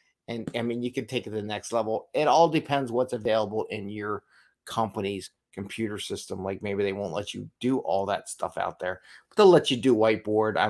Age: 50-69